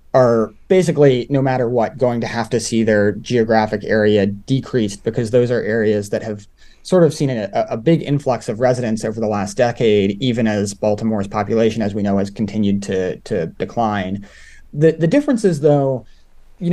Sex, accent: male, American